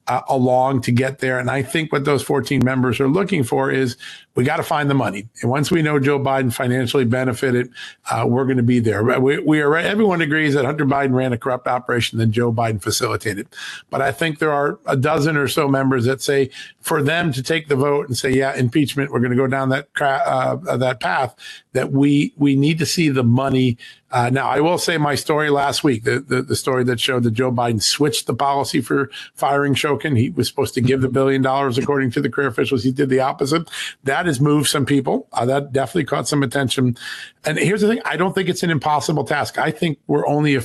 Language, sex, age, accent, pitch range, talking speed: English, male, 50-69, American, 125-145 Hz, 235 wpm